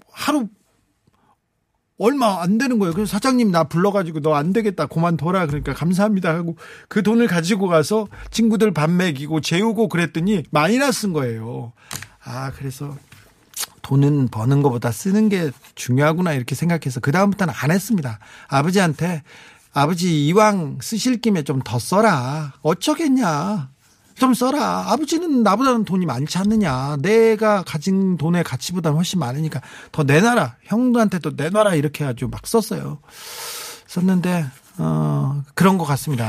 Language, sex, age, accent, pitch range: Korean, male, 40-59, native, 140-215 Hz